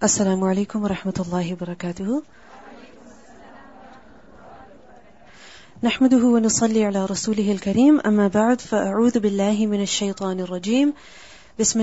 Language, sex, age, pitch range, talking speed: English, female, 30-49, 175-230 Hz, 105 wpm